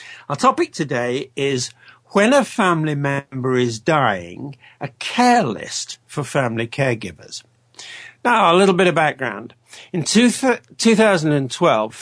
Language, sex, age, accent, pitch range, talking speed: English, male, 60-79, British, 125-180 Hz, 120 wpm